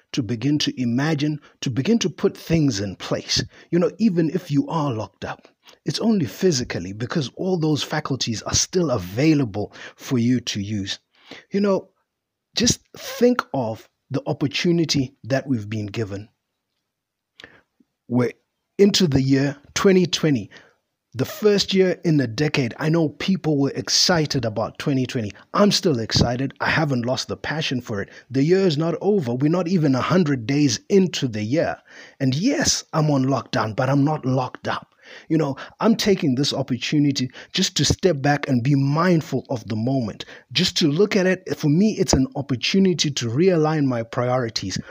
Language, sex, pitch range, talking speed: English, male, 125-175 Hz, 165 wpm